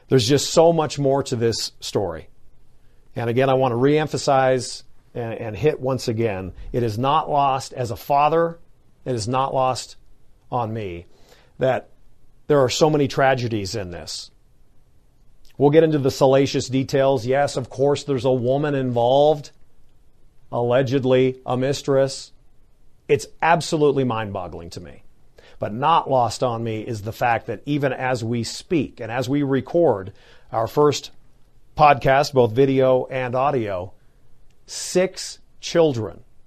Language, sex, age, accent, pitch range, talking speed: English, male, 40-59, American, 120-145 Hz, 145 wpm